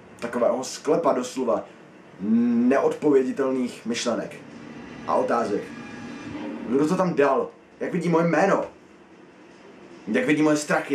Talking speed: 105 wpm